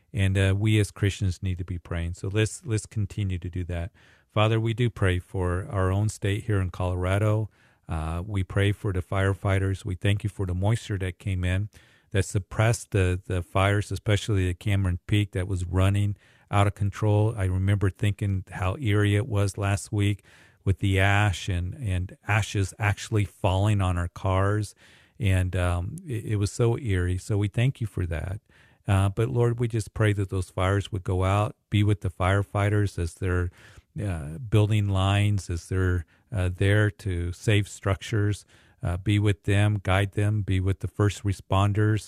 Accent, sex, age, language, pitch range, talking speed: American, male, 50-69, English, 95-105 Hz, 185 wpm